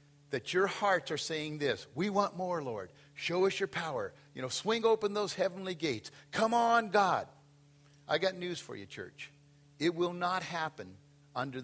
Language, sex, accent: English, male, American